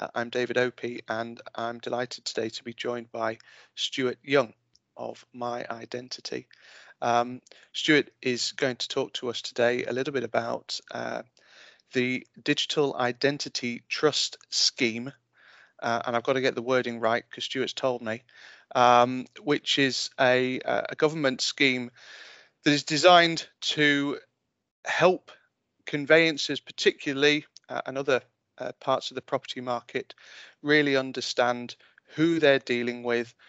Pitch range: 120-145 Hz